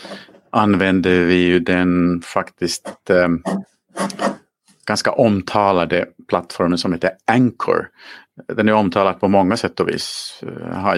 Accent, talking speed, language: Norwegian, 115 wpm, Swedish